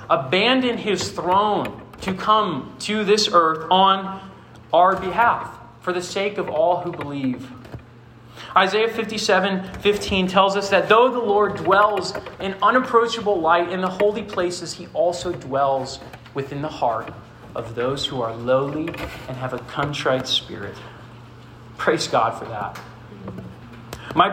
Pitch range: 125-190 Hz